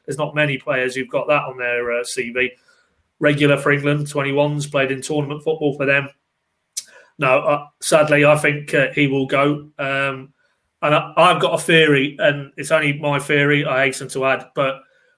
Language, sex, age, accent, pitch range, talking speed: English, male, 30-49, British, 130-150 Hz, 185 wpm